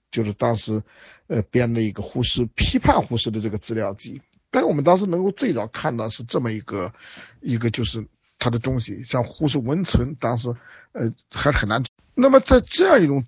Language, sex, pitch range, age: Chinese, male, 110-150 Hz, 50-69